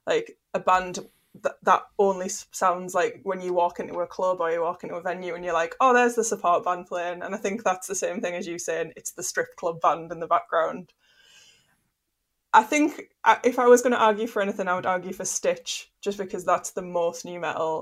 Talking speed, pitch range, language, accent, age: 230 wpm, 175-205 Hz, English, British, 20-39